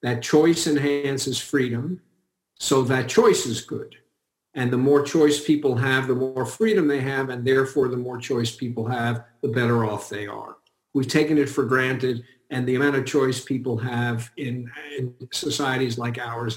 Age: 50-69